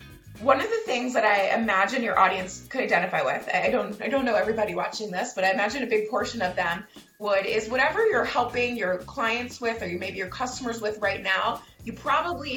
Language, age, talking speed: English, 20-39, 215 wpm